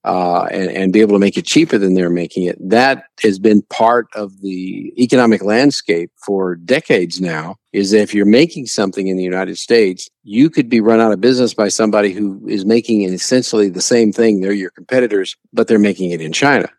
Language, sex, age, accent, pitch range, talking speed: English, male, 50-69, American, 95-115 Hz, 215 wpm